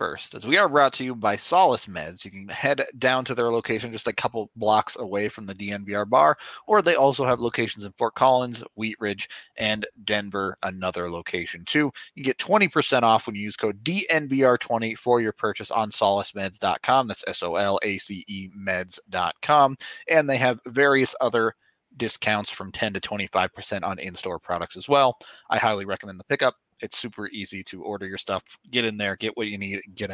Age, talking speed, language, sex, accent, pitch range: 30-49, 185 wpm, English, male, American, 100-125 Hz